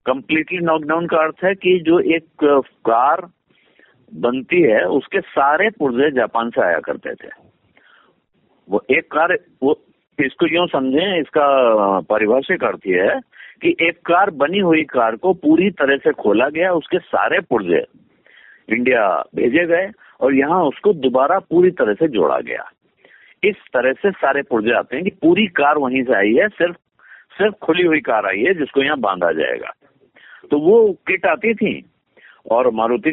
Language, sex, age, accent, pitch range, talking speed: Hindi, male, 50-69, native, 125-190 Hz, 160 wpm